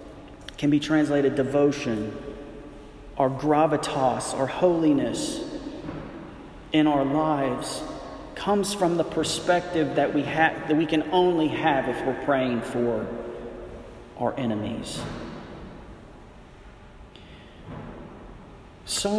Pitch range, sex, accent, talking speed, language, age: 135-185 Hz, male, American, 95 wpm, English, 40-59